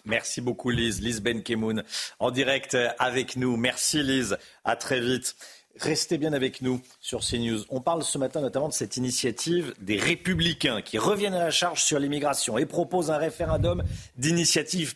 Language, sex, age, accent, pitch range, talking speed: French, male, 50-69, French, 110-165 Hz, 170 wpm